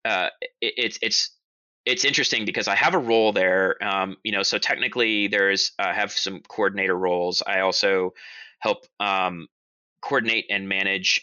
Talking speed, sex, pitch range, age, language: 160 wpm, male, 95-110 Hz, 20-39, English